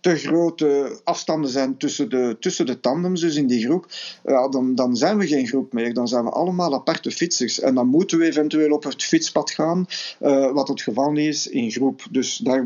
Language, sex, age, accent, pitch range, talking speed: Dutch, male, 50-69, Belgian, 125-155 Hz, 210 wpm